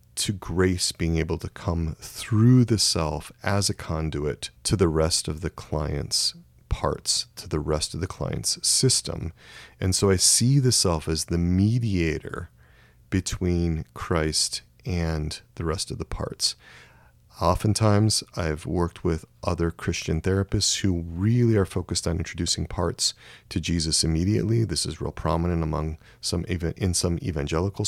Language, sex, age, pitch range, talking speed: English, male, 30-49, 80-100 Hz, 150 wpm